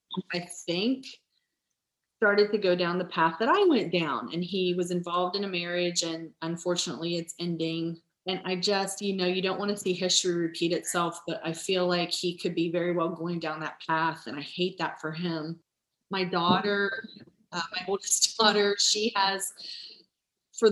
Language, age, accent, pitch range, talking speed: English, 30-49, American, 170-195 Hz, 185 wpm